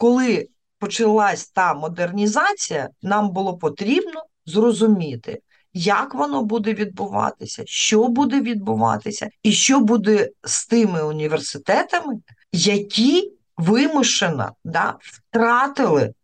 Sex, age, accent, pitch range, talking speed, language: female, 40-59, native, 175-235 Hz, 90 wpm, Ukrainian